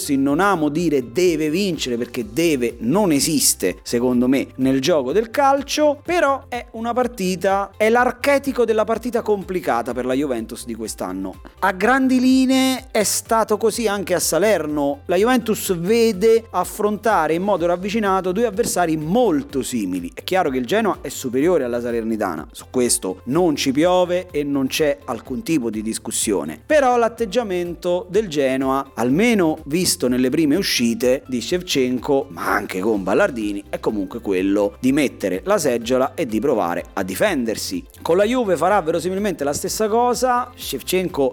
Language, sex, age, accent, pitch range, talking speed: Italian, male, 30-49, native, 135-210 Hz, 155 wpm